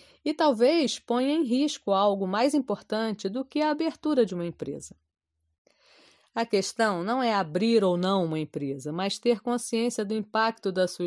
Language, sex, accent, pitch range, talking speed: Portuguese, female, Brazilian, 175-245 Hz, 170 wpm